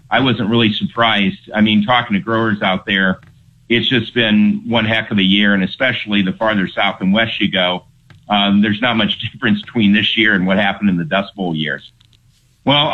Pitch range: 105-120 Hz